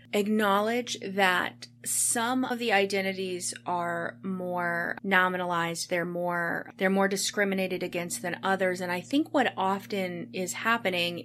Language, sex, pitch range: English, female, 180-225 Hz